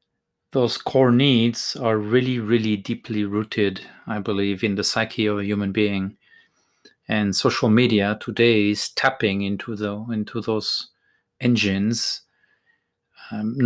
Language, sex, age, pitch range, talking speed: English, male, 40-59, 105-120 Hz, 125 wpm